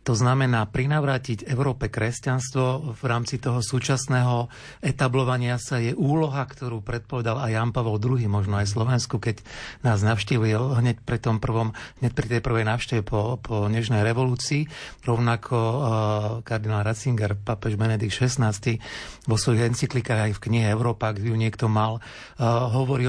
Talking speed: 150 wpm